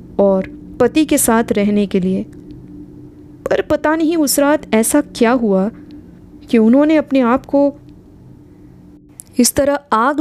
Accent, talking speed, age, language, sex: native, 135 wpm, 20-39, Hindi, female